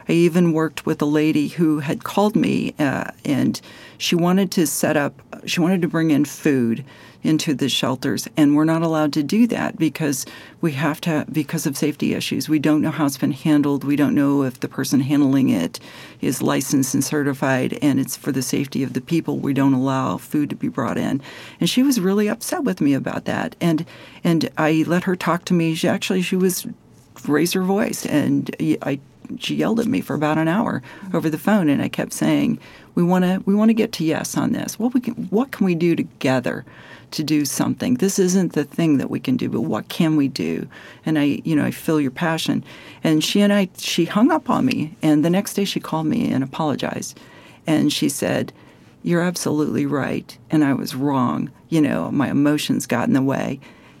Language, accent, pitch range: English, American, 145-185 Hz